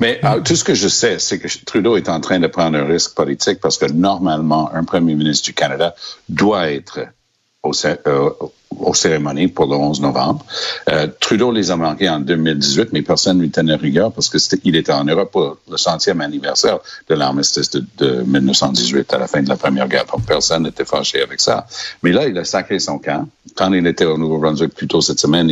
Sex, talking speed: male, 220 wpm